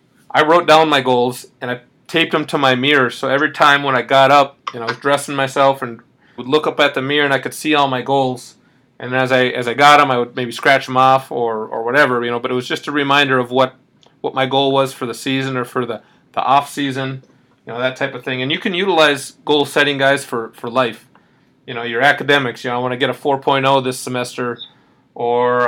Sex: male